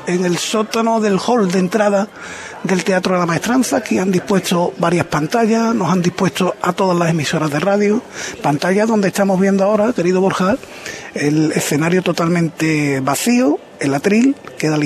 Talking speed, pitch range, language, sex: 170 wpm, 170-200 Hz, Spanish, male